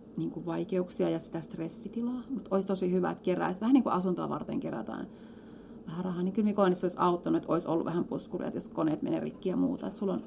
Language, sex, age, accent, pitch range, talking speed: Finnish, female, 30-49, native, 175-220 Hz, 220 wpm